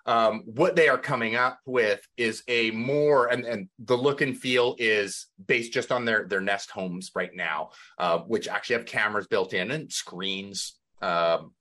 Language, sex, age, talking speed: English, male, 30-49, 185 wpm